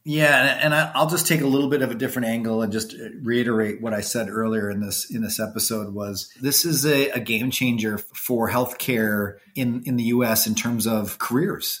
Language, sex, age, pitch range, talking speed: English, male, 30-49, 110-130 Hz, 210 wpm